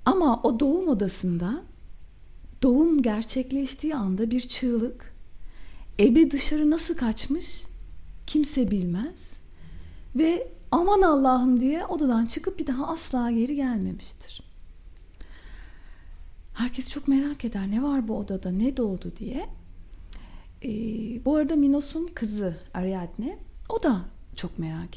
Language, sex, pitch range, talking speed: Turkish, female, 185-295 Hz, 115 wpm